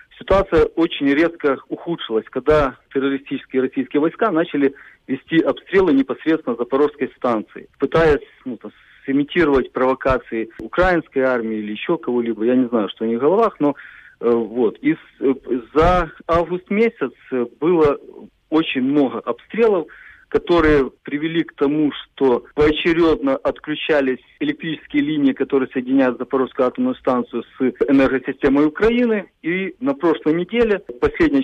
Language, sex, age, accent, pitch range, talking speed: Russian, male, 40-59, native, 135-185 Hz, 120 wpm